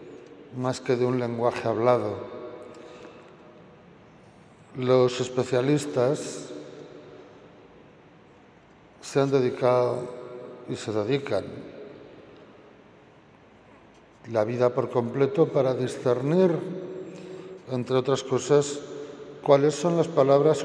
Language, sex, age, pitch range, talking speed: Spanish, male, 60-79, 125-150 Hz, 80 wpm